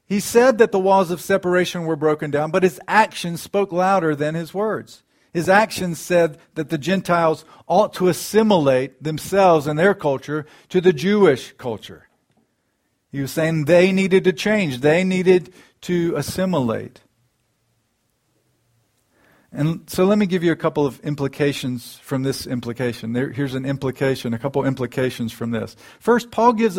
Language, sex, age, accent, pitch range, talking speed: English, male, 50-69, American, 130-185 Hz, 160 wpm